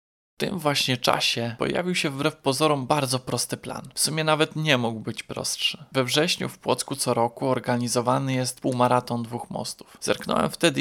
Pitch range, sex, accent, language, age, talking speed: 120-140 Hz, male, native, Polish, 20-39, 170 wpm